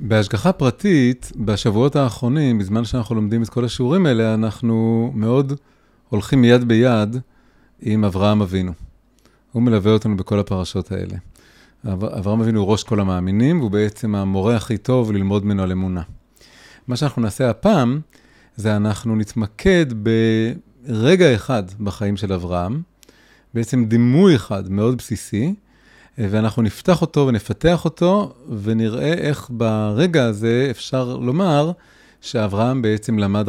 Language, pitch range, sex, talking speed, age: Hebrew, 105-130 Hz, male, 125 wpm, 30-49